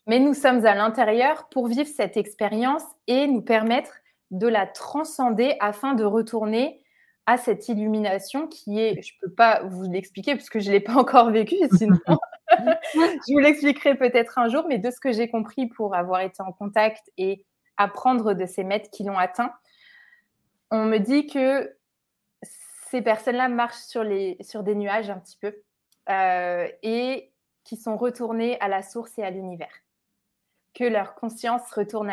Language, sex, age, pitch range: French, female, 20-39, 200-245 Hz